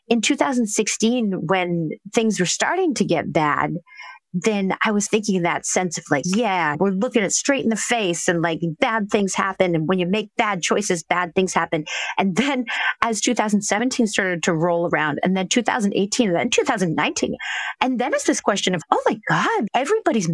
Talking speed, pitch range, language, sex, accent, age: 190 wpm, 175-230 Hz, English, female, American, 30-49